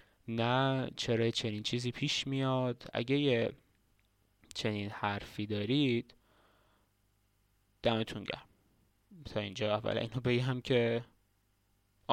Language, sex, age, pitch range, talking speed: Persian, male, 20-39, 105-130 Hz, 95 wpm